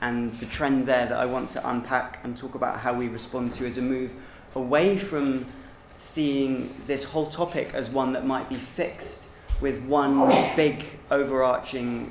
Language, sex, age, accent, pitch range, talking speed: English, male, 20-39, British, 115-135 Hz, 175 wpm